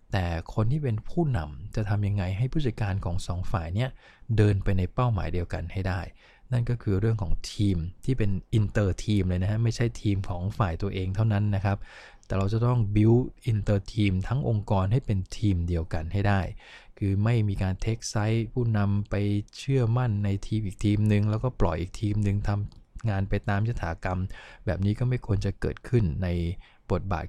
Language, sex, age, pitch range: English, male, 20-39, 95-115 Hz